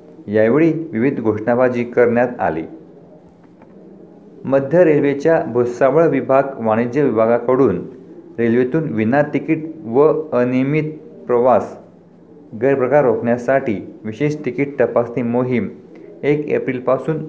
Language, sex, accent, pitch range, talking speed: Marathi, male, native, 120-145 Hz, 85 wpm